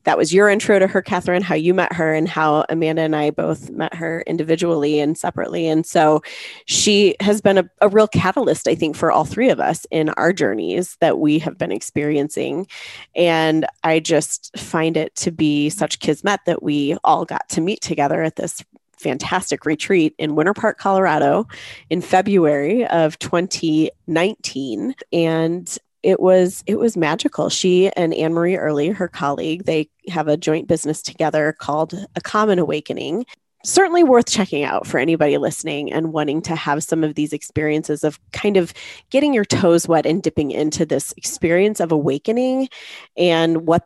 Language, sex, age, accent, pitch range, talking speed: English, female, 30-49, American, 150-180 Hz, 175 wpm